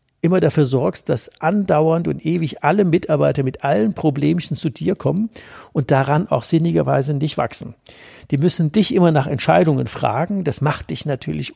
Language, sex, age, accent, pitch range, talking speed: German, male, 60-79, German, 135-170 Hz, 165 wpm